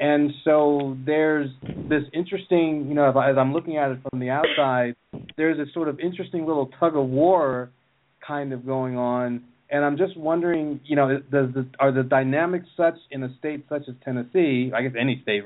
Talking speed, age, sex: 185 wpm, 40-59, male